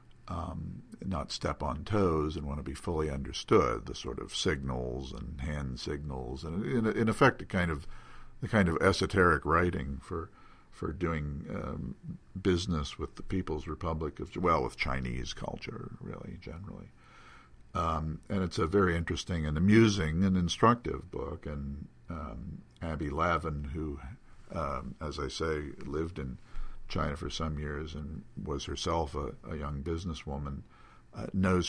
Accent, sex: American, male